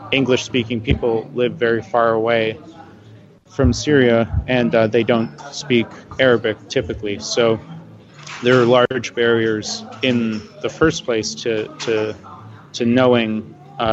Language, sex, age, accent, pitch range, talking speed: English, male, 30-49, American, 110-125 Hz, 125 wpm